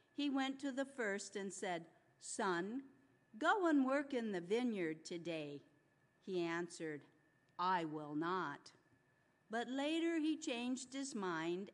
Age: 50-69